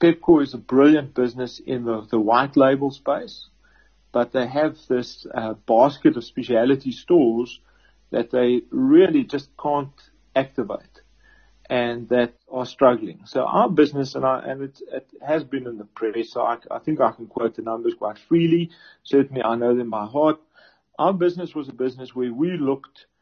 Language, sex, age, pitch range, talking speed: English, male, 40-59, 120-145 Hz, 175 wpm